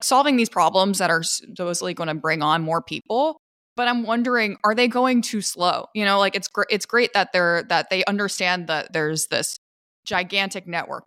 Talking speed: 200 wpm